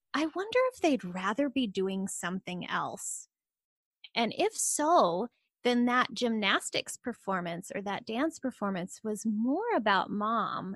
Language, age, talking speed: English, 20-39, 135 wpm